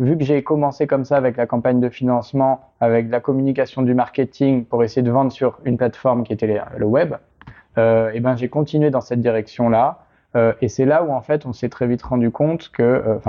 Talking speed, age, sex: 230 wpm, 20-39, male